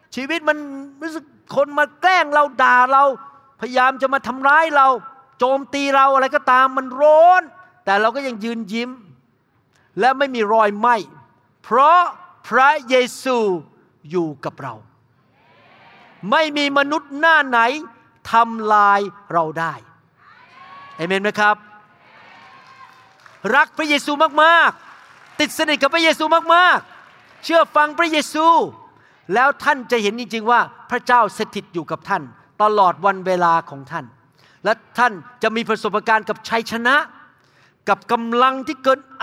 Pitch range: 190-275 Hz